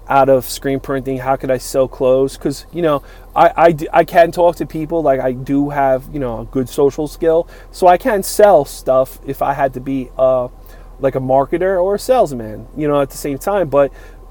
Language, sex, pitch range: English, male, 130-170 Hz